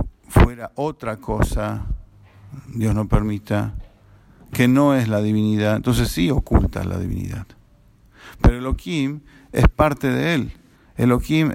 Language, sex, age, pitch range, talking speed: English, male, 50-69, 100-130 Hz, 130 wpm